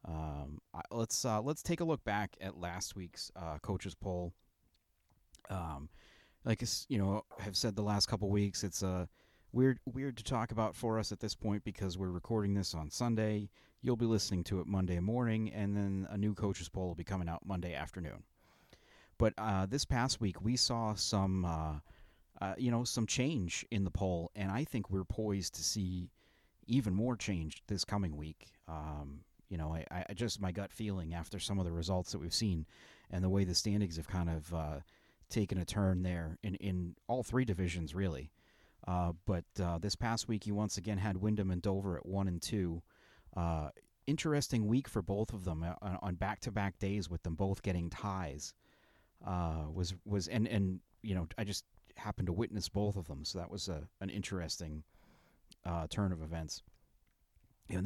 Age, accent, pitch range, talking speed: 30-49, American, 85-110 Hz, 195 wpm